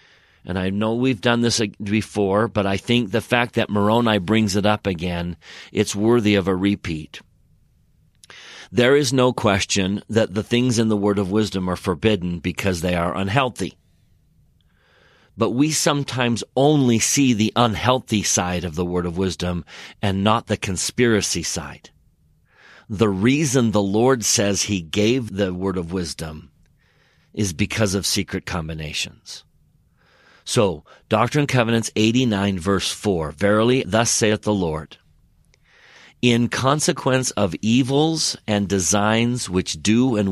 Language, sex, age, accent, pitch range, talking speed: English, male, 40-59, American, 90-115 Hz, 145 wpm